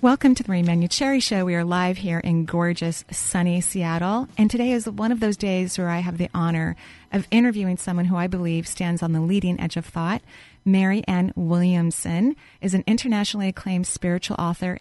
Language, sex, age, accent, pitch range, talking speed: English, female, 30-49, American, 170-200 Hz, 190 wpm